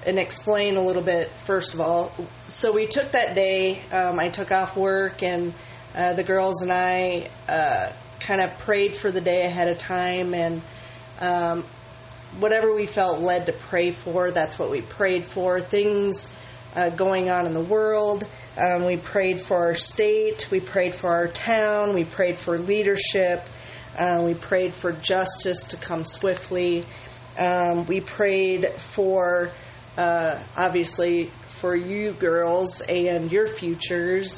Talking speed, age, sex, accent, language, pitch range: 155 wpm, 30-49, female, American, English, 170-190 Hz